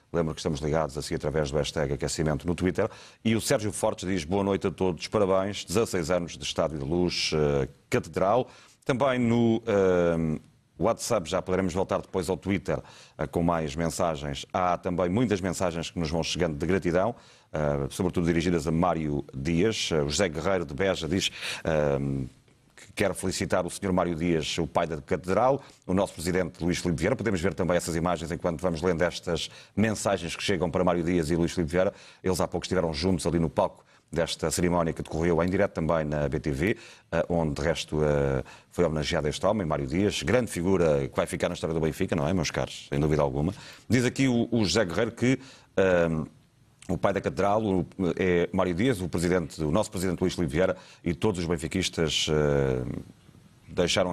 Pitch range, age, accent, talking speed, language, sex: 80-95 Hz, 40-59, Portuguese, 185 wpm, Portuguese, male